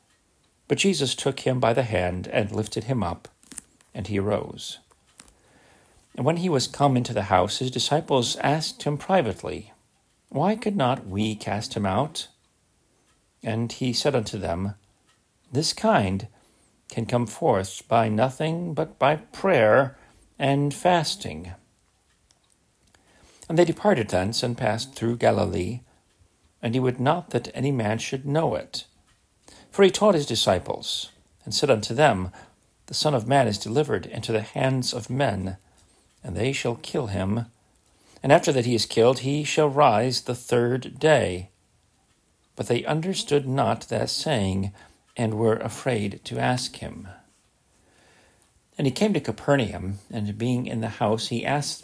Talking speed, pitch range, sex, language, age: 150 wpm, 105-140 Hz, male, English, 50-69